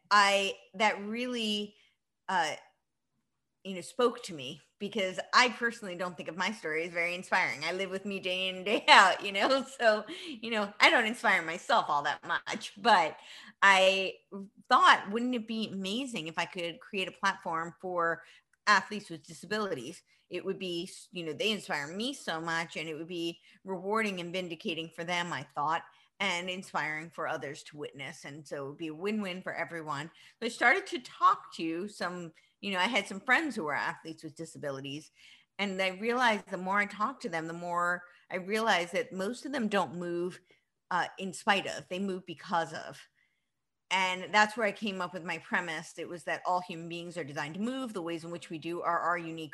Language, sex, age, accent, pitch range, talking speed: English, female, 30-49, American, 165-210 Hz, 200 wpm